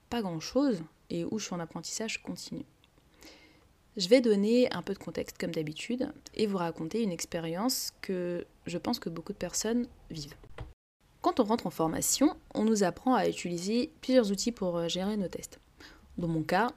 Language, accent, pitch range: French, French, 165-220 Hz